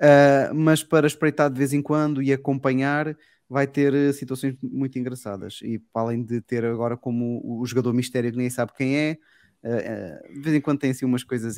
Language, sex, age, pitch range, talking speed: Portuguese, male, 20-39, 115-140 Hz, 200 wpm